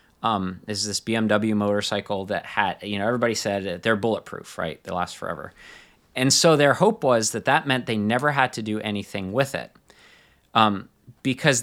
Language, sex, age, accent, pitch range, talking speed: English, male, 30-49, American, 105-135 Hz, 180 wpm